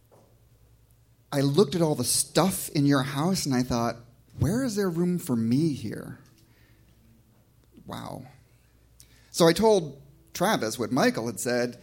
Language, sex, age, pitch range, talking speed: English, male, 30-49, 120-170 Hz, 140 wpm